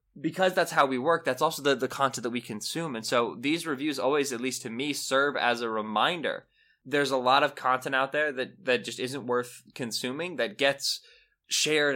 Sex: male